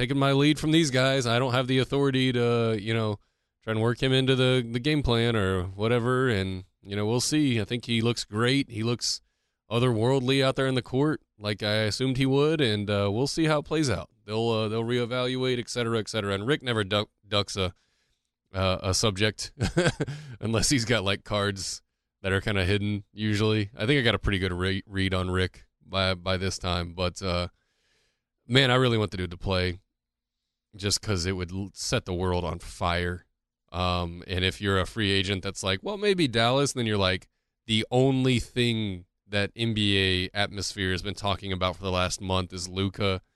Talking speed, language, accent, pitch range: 210 wpm, English, American, 95-120 Hz